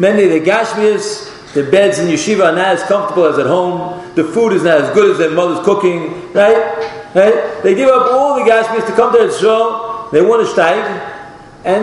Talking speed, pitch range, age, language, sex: 220 wpm, 185-265 Hz, 40-59, English, male